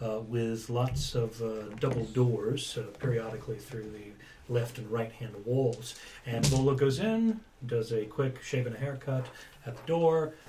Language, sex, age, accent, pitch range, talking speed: English, male, 40-59, American, 115-150 Hz, 165 wpm